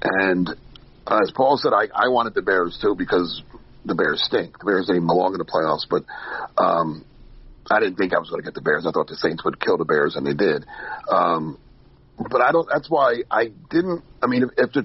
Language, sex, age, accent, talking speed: English, male, 40-59, American, 235 wpm